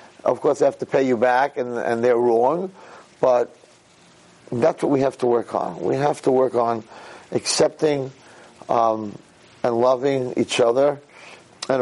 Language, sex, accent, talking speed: English, male, American, 160 wpm